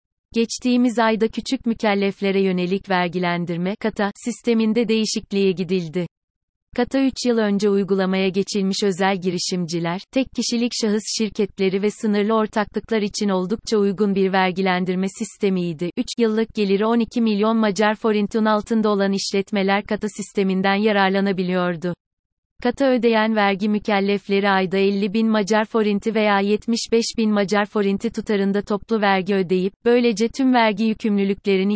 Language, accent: Turkish, native